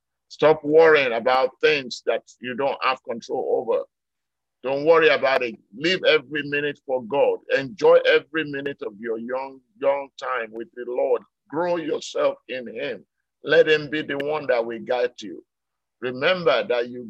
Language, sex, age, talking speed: English, male, 50-69, 160 wpm